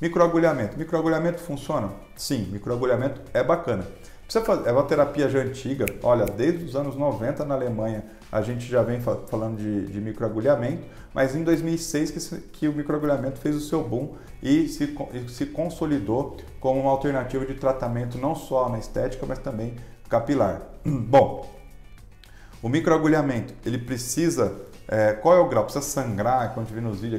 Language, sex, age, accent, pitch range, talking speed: Portuguese, male, 40-59, Brazilian, 115-150 Hz, 155 wpm